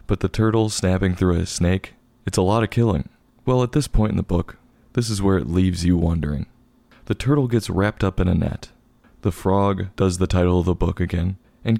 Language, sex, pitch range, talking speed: English, male, 90-115 Hz, 225 wpm